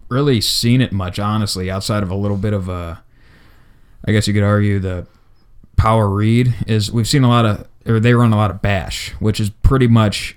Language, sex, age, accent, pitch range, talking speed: English, male, 20-39, American, 100-115 Hz, 215 wpm